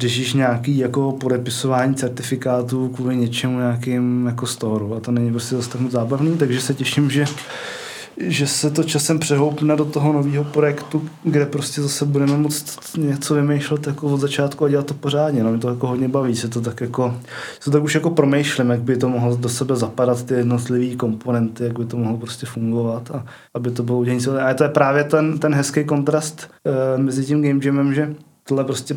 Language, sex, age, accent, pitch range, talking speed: Czech, male, 20-39, native, 120-145 Hz, 200 wpm